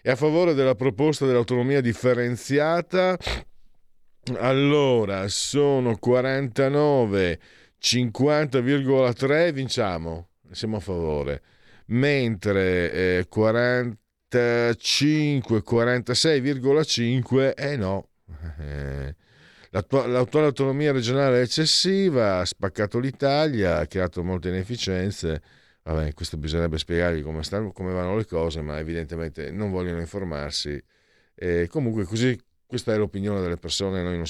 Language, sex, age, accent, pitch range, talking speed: Italian, male, 50-69, native, 95-130 Hz, 95 wpm